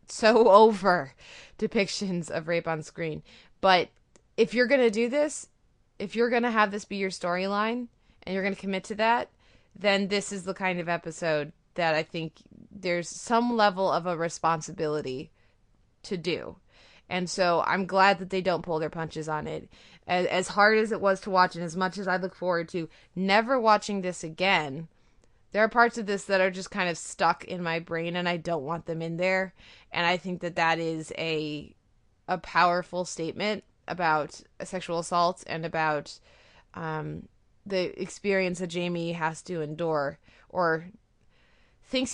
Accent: American